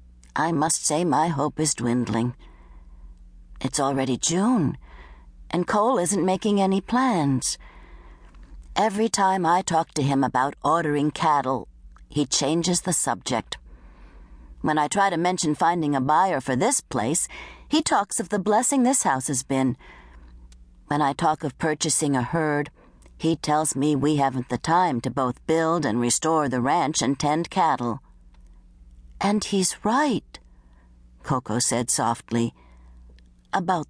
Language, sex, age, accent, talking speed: English, female, 60-79, American, 140 wpm